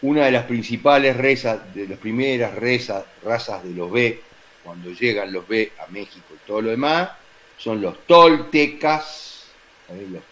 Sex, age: male, 40-59